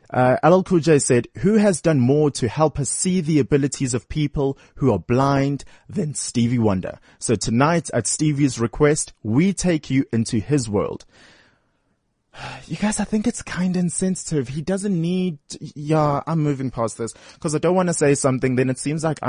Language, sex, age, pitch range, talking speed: English, male, 20-39, 115-155 Hz, 185 wpm